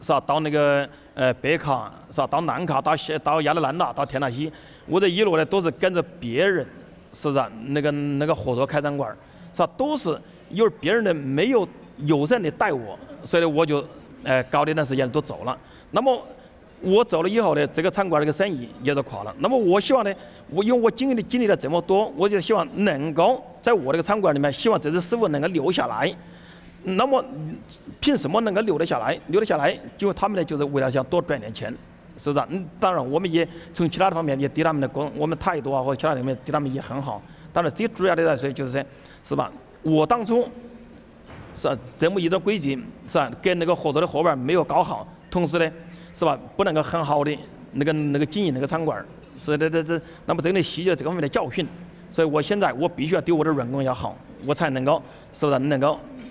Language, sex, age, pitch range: English, male, 30-49, 145-185 Hz